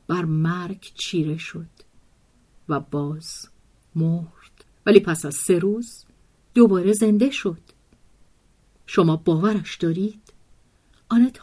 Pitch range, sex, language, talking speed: 155-210 Hz, female, Persian, 100 wpm